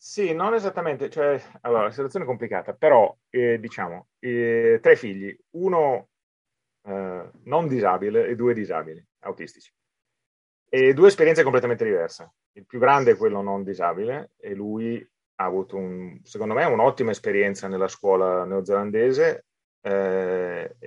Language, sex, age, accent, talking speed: Italian, male, 30-49, native, 140 wpm